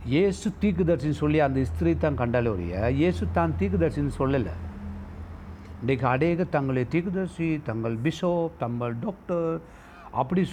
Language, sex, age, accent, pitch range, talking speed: Tamil, male, 60-79, native, 105-160 Hz, 120 wpm